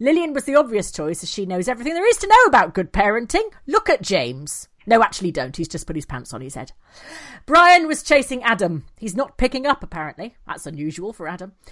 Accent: British